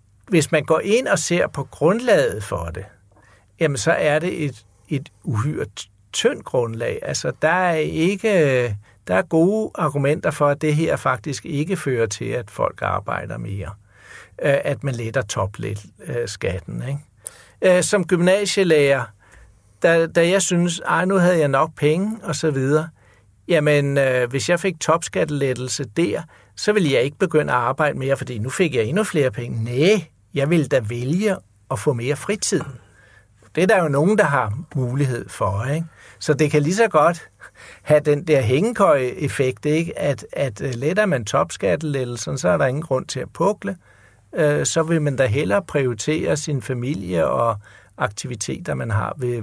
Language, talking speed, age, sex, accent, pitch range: Danish, 165 wpm, 60-79, male, native, 120-165 Hz